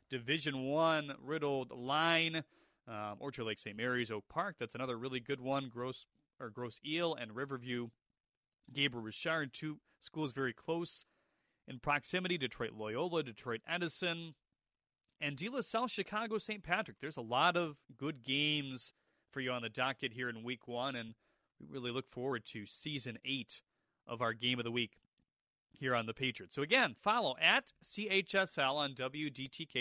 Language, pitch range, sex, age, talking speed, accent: English, 120-155 Hz, male, 30-49, 165 wpm, American